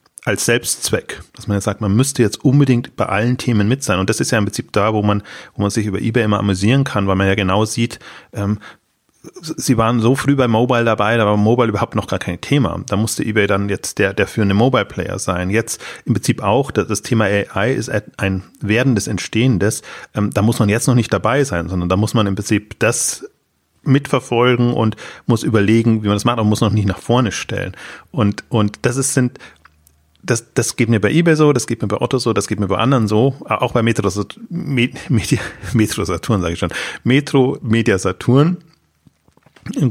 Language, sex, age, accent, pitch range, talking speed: German, male, 30-49, German, 105-125 Hz, 210 wpm